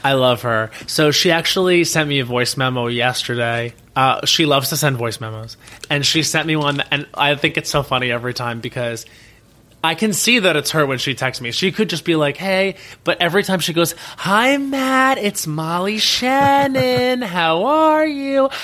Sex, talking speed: male, 200 wpm